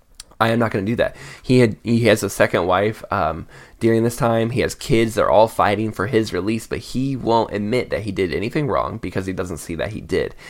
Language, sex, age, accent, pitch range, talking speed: English, male, 10-29, American, 100-125 Hz, 245 wpm